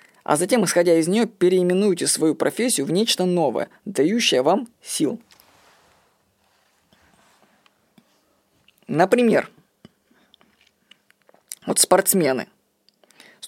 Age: 20-39